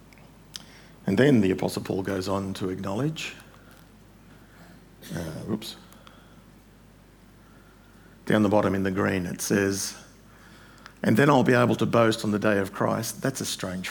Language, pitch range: English, 95-115 Hz